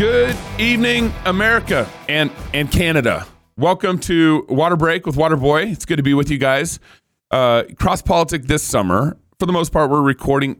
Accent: American